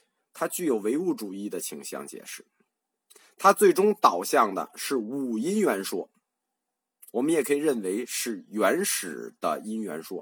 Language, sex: Chinese, male